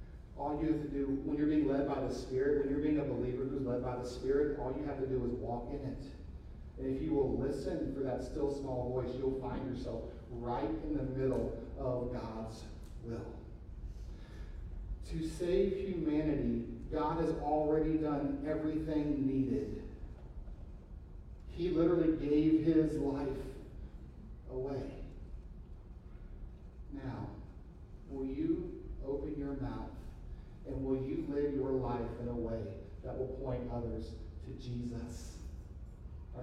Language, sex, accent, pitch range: English, male, American, 95-155 Hz